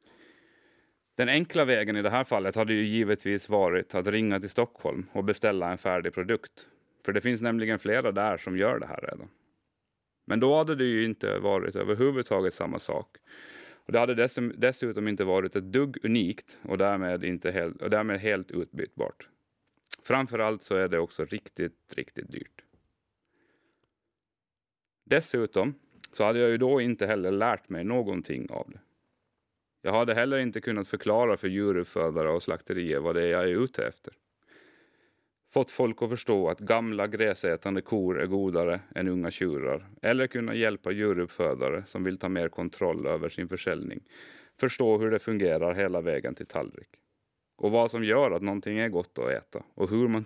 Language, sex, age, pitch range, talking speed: Swedish, male, 30-49, 100-120 Hz, 170 wpm